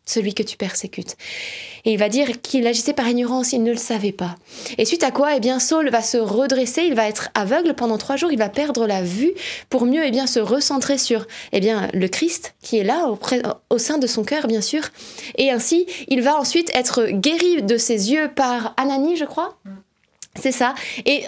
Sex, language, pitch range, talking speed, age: female, French, 230-300 Hz, 220 wpm, 20-39